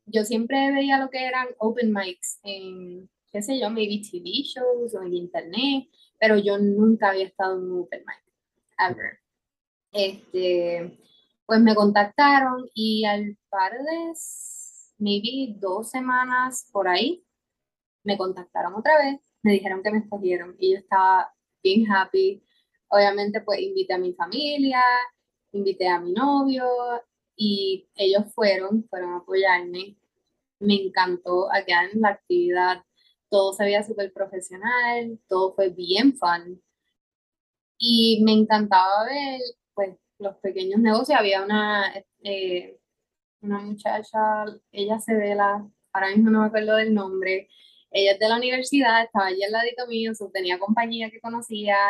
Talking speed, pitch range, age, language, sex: 145 wpm, 190-230 Hz, 20-39, Spanish, female